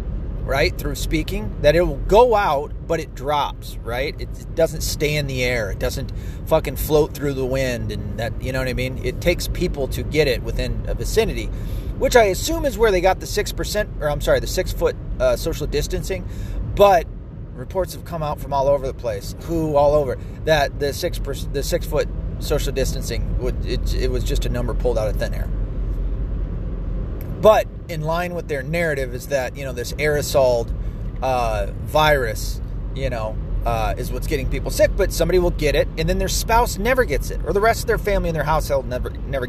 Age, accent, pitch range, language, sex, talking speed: 30-49, American, 115-155 Hz, English, male, 210 wpm